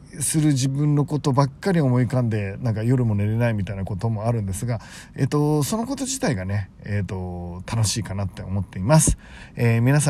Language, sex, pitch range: Japanese, male, 105-145 Hz